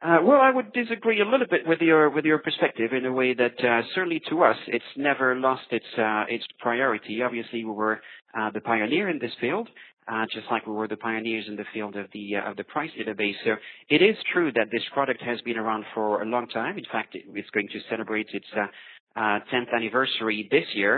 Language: English